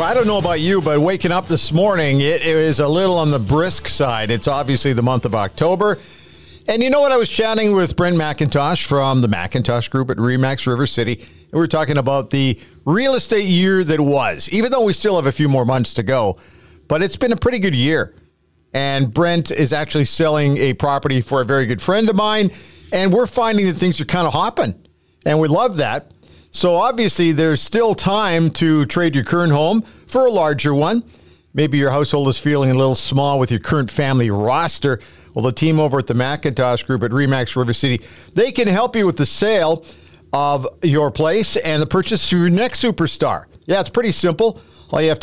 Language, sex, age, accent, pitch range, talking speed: English, male, 50-69, American, 135-180 Hz, 215 wpm